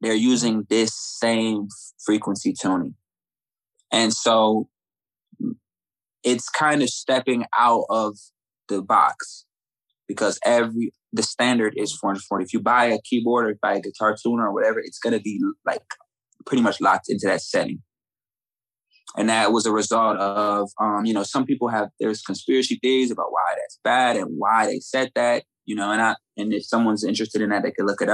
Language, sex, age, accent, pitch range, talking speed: English, male, 20-39, American, 105-130 Hz, 180 wpm